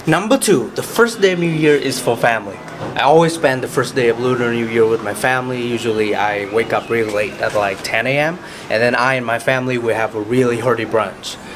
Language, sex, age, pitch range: Vietnamese, male, 20-39, 110-150 Hz